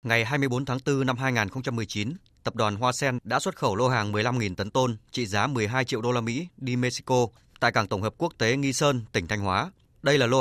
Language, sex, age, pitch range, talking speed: Vietnamese, male, 20-39, 110-135 Hz, 235 wpm